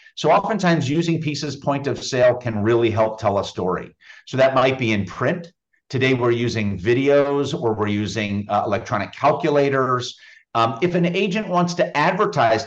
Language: English